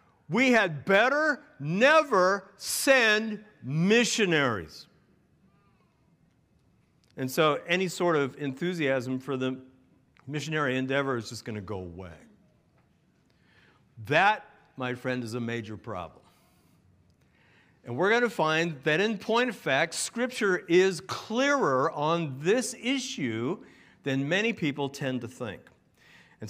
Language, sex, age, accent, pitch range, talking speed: English, male, 50-69, American, 135-185 Hz, 120 wpm